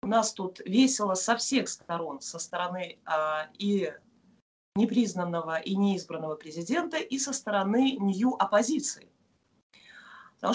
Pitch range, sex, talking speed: 185-260 Hz, female, 115 wpm